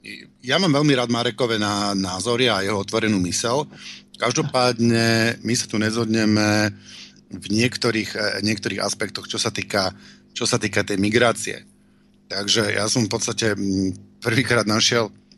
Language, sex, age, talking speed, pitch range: Slovak, male, 50-69, 130 wpm, 105-125 Hz